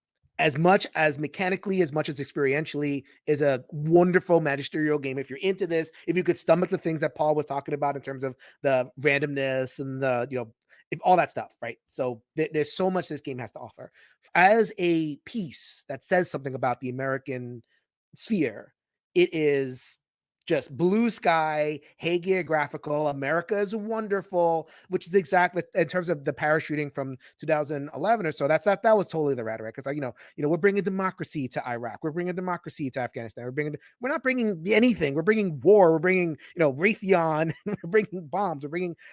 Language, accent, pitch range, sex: English, American, 140-185 Hz, male